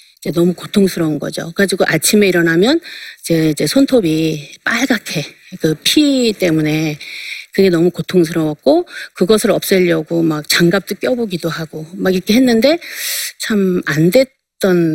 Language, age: Korean, 40-59